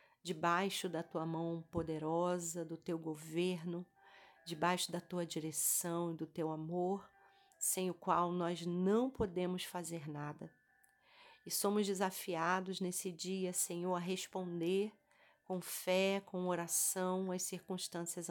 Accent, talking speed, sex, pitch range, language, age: Brazilian, 125 wpm, female, 165-195 Hz, Portuguese, 40-59